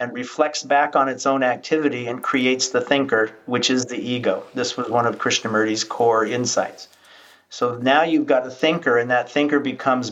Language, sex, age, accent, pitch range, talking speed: English, male, 50-69, American, 120-140 Hz, 190 wpm